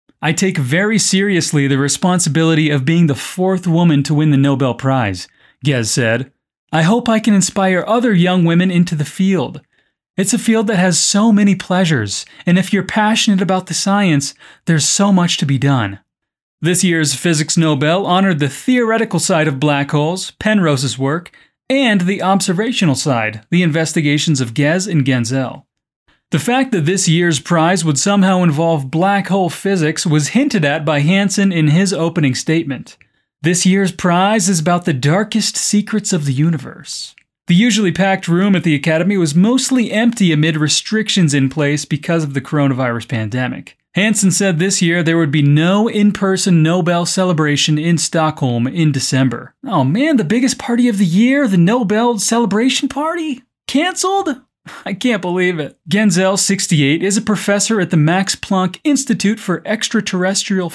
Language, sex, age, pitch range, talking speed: Portuguese, male, 30-49, 155-200 Hz, 165 wpm